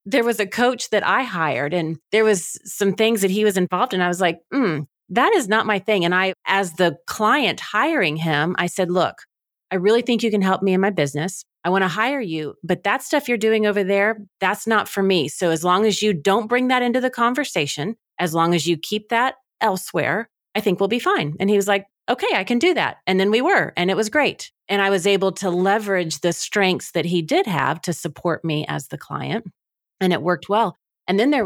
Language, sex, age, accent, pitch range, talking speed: English, female, 30-49, American, 170-205 Hz, 240 wpm